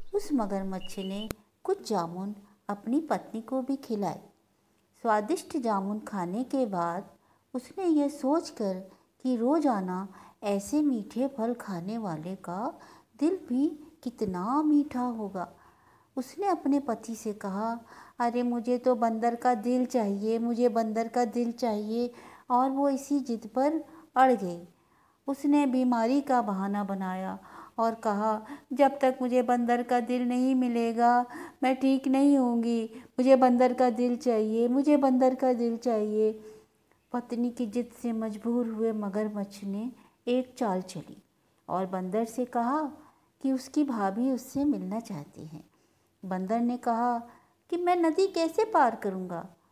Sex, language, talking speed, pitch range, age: female, Hindi, 140 wpm, 215-270 Hz, 50-69